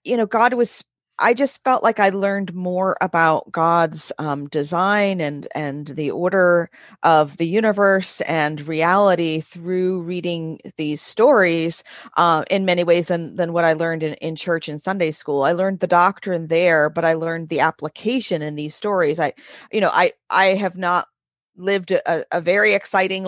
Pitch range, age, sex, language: 160-200 Hz, 40-59, female, English